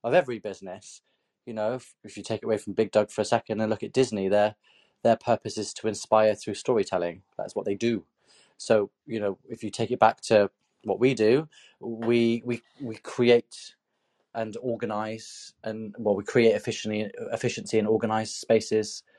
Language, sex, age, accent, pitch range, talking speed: English, male, 20-39, British, 100-115 Hz, 185 wpm